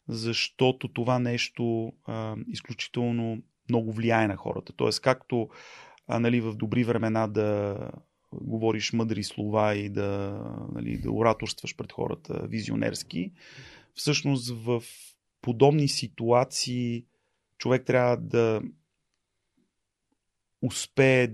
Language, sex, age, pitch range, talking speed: Bulgarian, male, 30-49, 110-125 Hz, 100 wpm